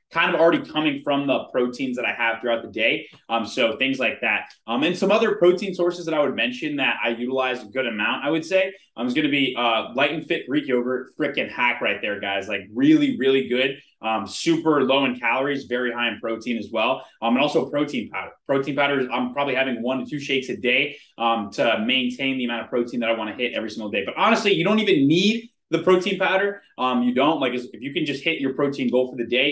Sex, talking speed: male, 255 wpm